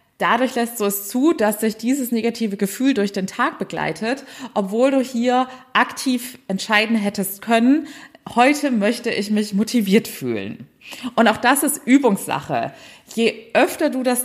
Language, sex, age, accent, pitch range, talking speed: German, female, 20-39, German, 195-250 Hz, 150 wpm